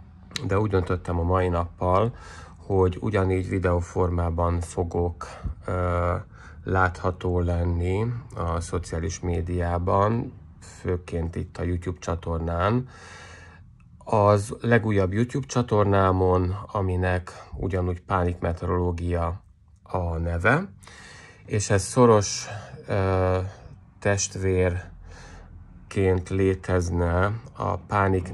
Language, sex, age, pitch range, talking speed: Hungarian, male, 30-49, 90-100 Hz, 85 wpm